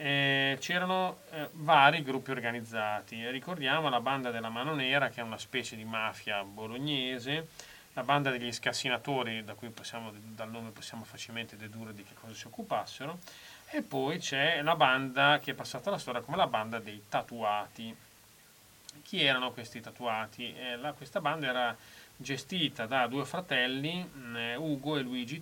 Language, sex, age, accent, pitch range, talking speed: Italian, male, 30-49, native, 110-145 Hz, 150 wpm